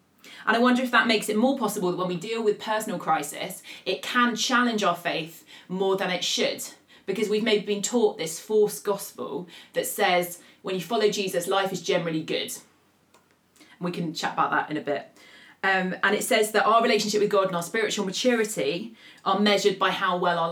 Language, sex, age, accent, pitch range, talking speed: English, female, 30-49, British, 180-215 Hz, 205 wpm